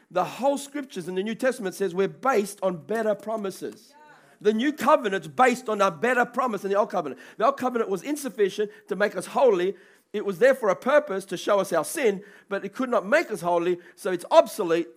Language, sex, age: English, male, 40-59